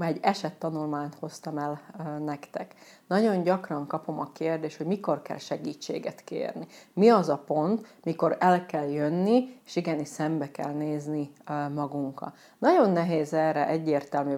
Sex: female